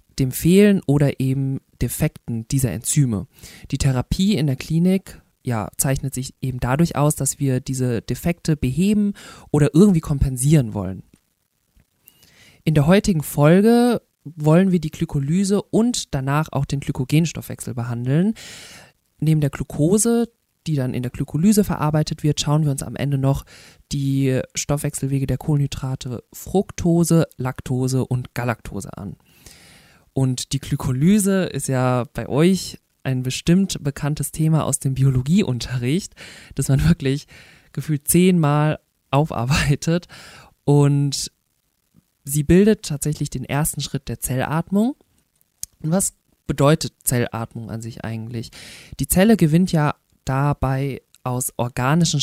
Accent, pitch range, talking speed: German, 130-165 Hz, 125 wpm